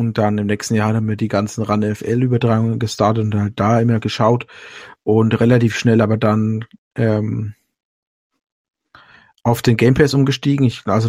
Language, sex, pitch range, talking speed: German, male, 110-135 Hz, 155 wpm